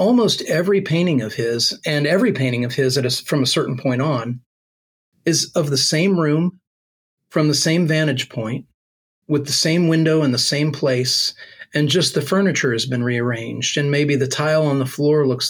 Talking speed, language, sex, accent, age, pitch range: 195 wpm, English, male, American, 40-59, 125-155 Hz